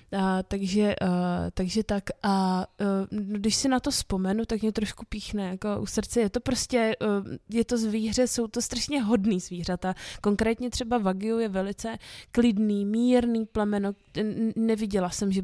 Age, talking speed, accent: 20-39, 165 wpm, native